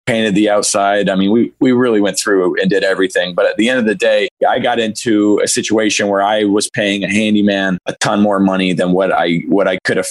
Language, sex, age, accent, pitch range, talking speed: English, male, 20-39, American, 100-125 Hz, 250 wpm